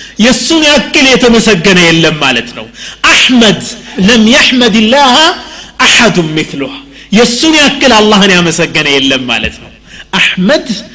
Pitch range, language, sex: 185-255 Hz, Amharic, male